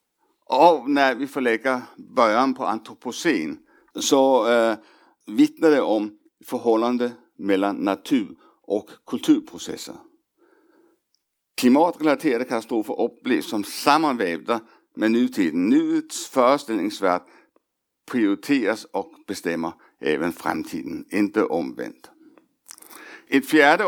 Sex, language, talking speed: male, Swedish, 90 wpm